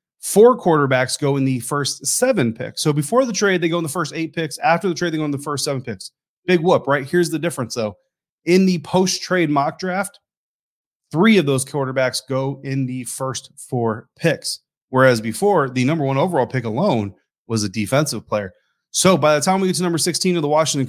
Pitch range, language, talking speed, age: 125-155 Hz, English, 215 wpm, 30-49